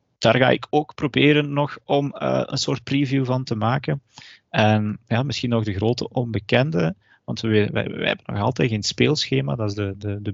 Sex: male